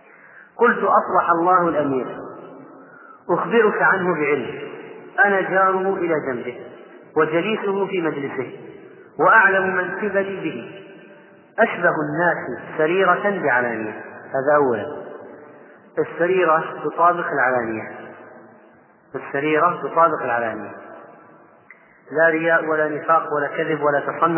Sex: male